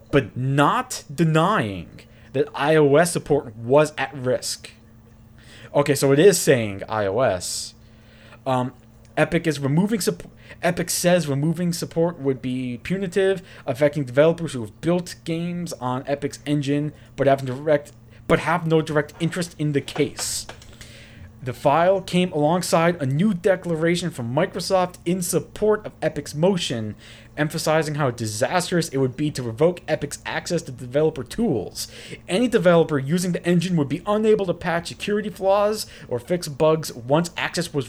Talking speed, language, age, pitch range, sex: 145 wpm, English, 30-49, 125-175 Hz, male